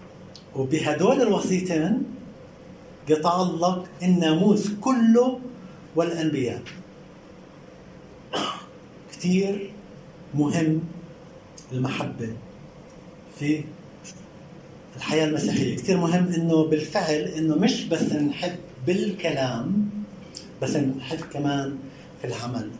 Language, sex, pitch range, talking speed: Arabic, male, 155-200 Hz, 70 wpm